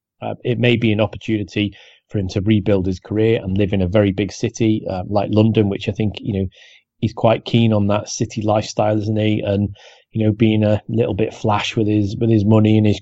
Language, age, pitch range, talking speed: English, 30-49, 100-115 Hz, 235 wpm